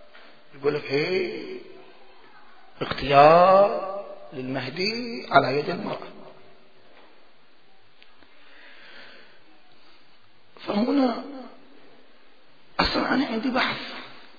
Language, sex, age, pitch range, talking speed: Arabic, male, 40-59, 150-215 Hz, 45 wpm